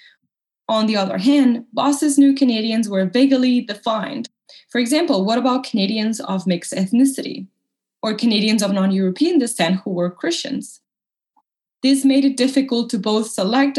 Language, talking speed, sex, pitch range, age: English, 145 wpm, female, 200-270 Hz, 20-39